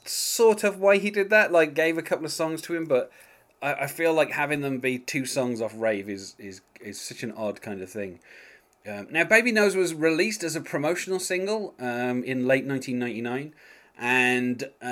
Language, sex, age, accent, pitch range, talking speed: English, male, 30-49, British, 115-150 Hz, 195 wpm